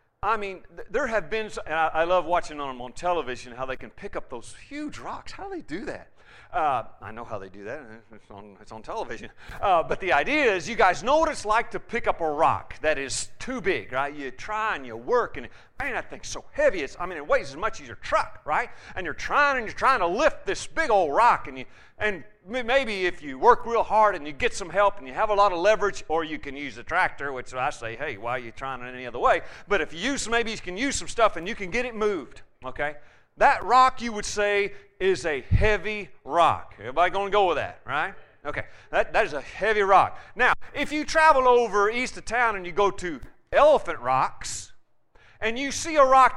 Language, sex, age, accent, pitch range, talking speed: English, male, 40-59, American, 175-270 Hz, 245 wpm